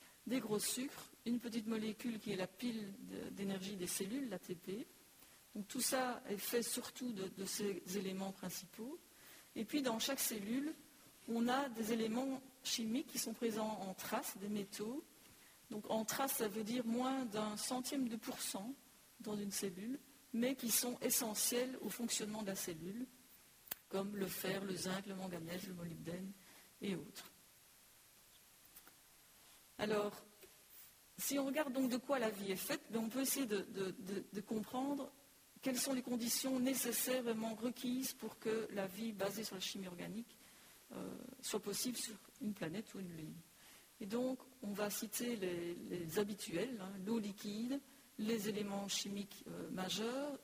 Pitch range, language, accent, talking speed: 200-255 Hz, French, French, 160 wpm